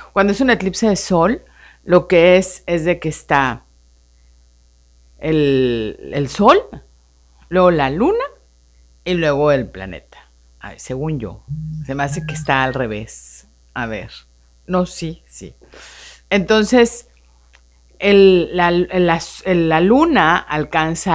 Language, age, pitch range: Spanish, 50-69, 105-175 Hz